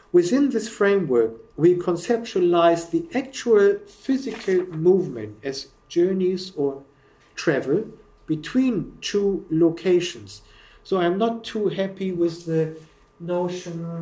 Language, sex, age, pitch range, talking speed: English, male, 50-69, 145-180 Hz, 105 wpm